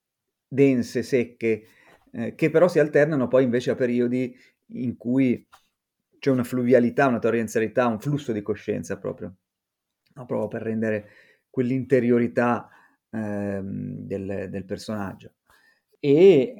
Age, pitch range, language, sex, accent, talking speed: 30-49, 100-125 Hz, Italian, male, native, 115 wpm